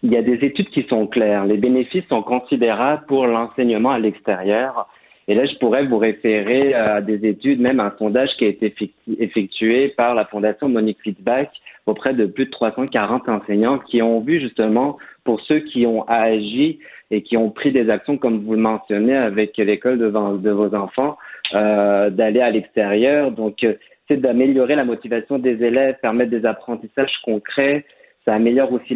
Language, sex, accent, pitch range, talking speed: French, male, French, 110-130 Hz, 175 wpm